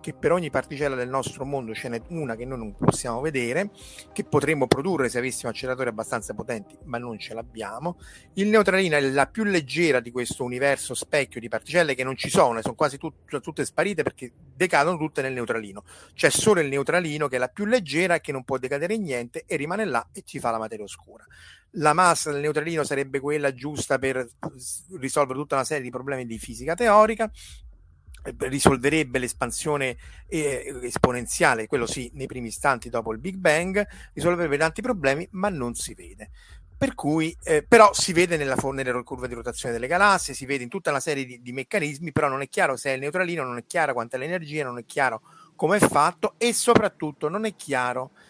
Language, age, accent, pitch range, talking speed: Italian, 30-49, native, 125-170 Hz, 200 wpm